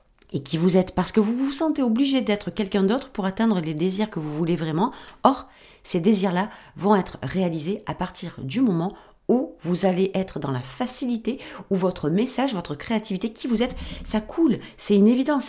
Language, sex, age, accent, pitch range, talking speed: French, female, 40-59, French, 175-225 Hz, 200 wpm